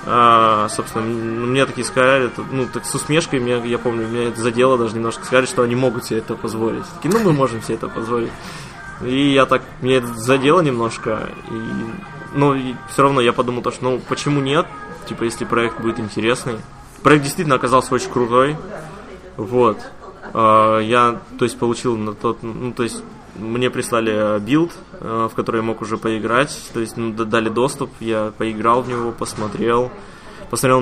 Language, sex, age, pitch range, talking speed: Russian, male, 20-39, 115-130 Hz, 175 wpm